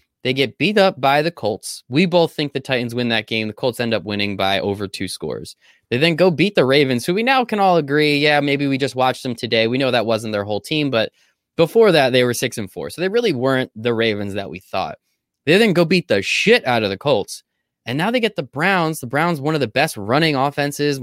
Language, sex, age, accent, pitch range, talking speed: English, male, 20-39, American, 115-165 Hz, 260 wpm